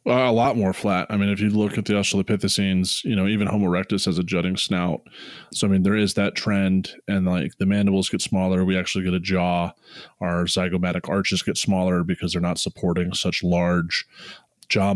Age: 20-39